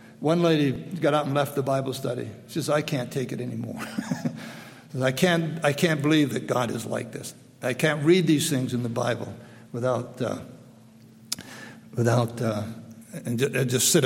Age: 60-79